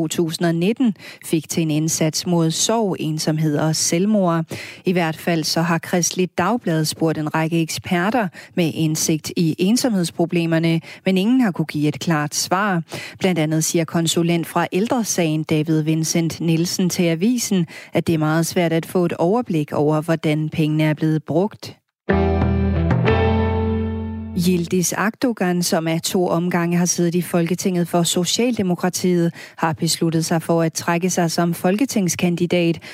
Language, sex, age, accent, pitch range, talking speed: Danish, female, 30-49, native, 160-180 Hz, 145 wpm